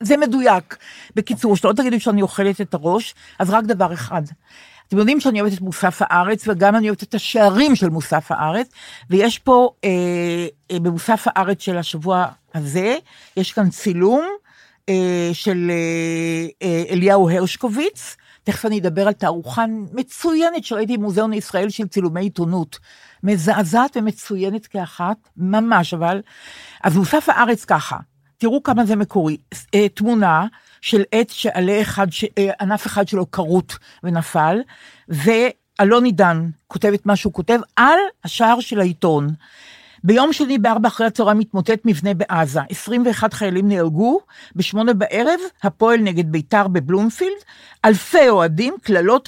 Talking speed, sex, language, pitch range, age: 130 wpm, female, Hebrew, 180-235 Hz, 50-69